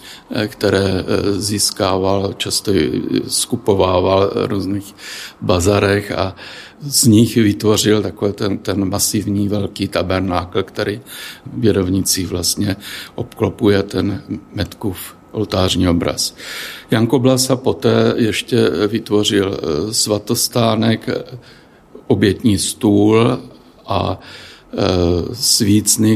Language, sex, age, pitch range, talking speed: Czech, male, 60-79, 95-110 Hz, 80 wpm